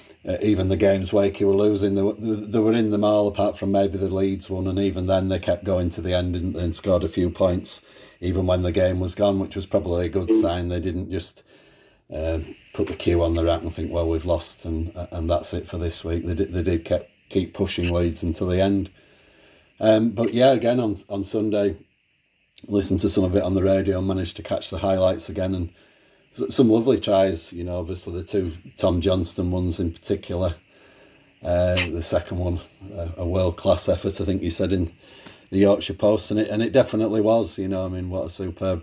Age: 30-49